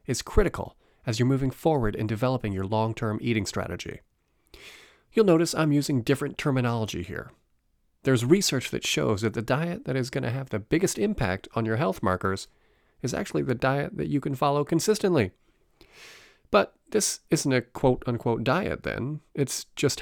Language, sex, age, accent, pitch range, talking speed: English, male, 40-59, American, 115-150 Hz, 170 wpm